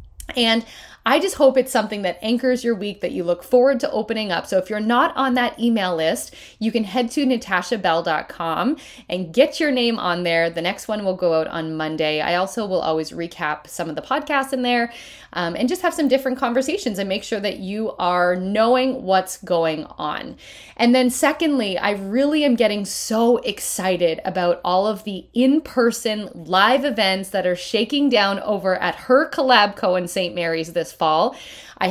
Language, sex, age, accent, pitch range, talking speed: English, female, 20-39, American, 185-255 Hz, 195 wpm